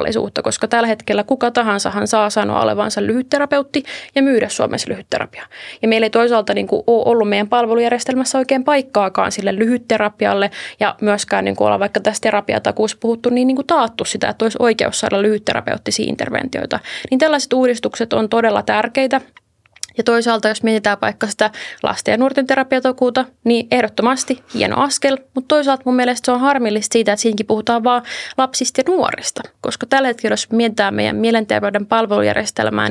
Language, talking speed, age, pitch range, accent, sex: Finnish, 160 wpm, 20-39, 210-255 Hz, native, female